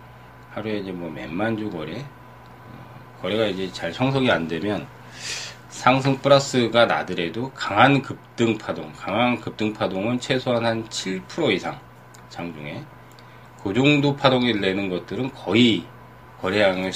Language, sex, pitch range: Korean, male, 95-125 Hz